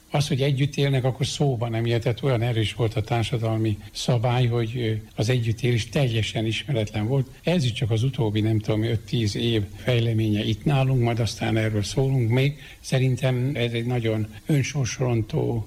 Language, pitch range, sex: Hungarian, 110-135 Hz, male